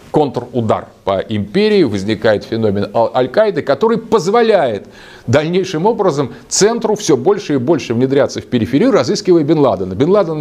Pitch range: 115-180 Hz